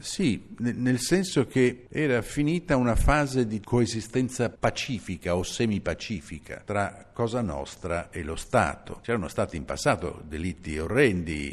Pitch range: 85-125 Hz